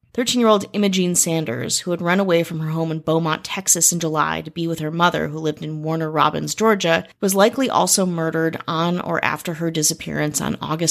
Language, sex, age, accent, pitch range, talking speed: English, female, 30-49, American, 160-190 Hz, 205 wpm